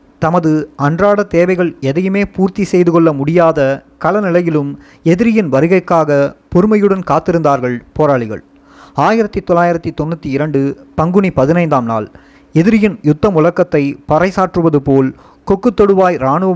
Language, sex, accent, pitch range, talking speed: Tamil, male, native, 145-190 Hz, 105 wpm